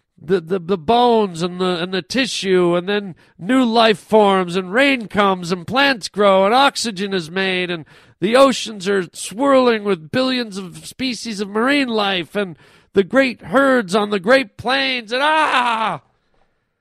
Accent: American